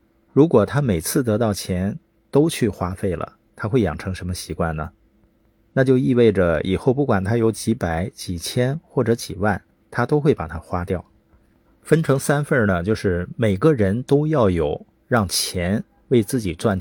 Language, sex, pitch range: Chinese, male, 95-120 Hz